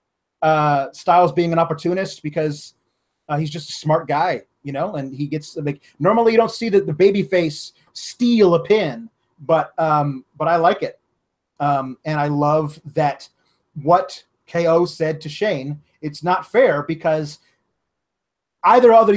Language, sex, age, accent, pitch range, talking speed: English, male, 30-49, American, 145-190 Hz, 160 wpm